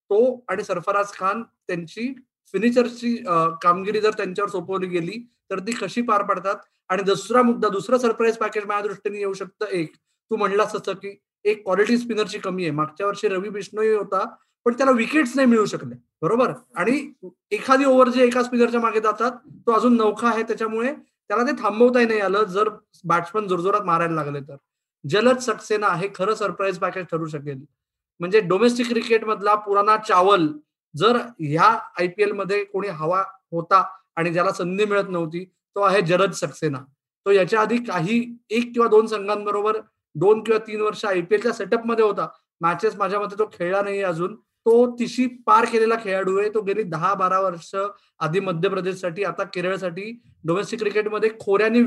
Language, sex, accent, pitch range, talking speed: Marathi, male, native, 190-230 Hz, 170 wpm